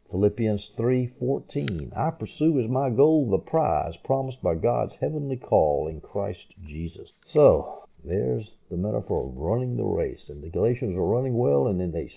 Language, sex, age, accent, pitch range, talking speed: English, male, 50-69, American, 100-135 Hz, 170 wpm